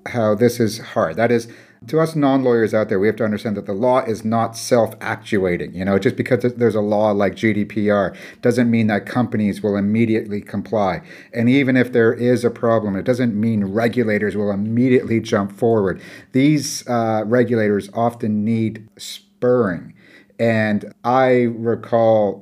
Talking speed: 165 wpm